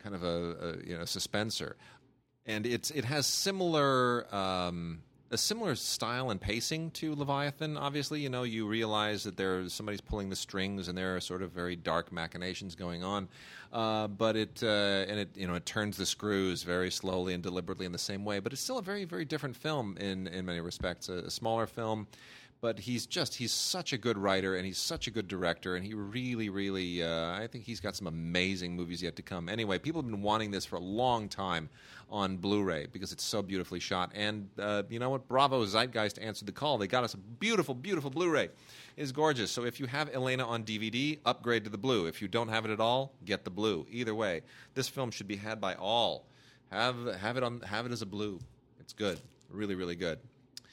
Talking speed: 220 wpm